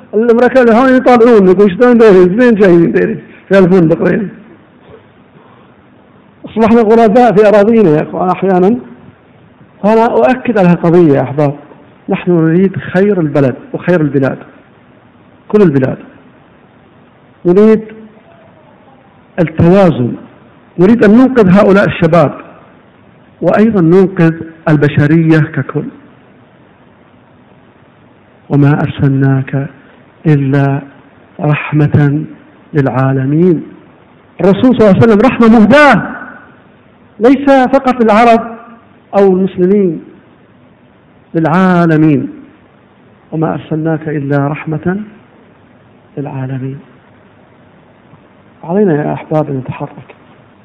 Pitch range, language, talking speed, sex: 150-215 Hz, Arabic, 80 wpm, male